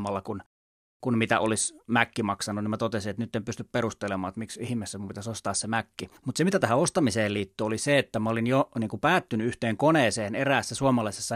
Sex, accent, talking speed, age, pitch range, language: male, native, 215 wpm, 30-49, 110-135 Hz, Finnish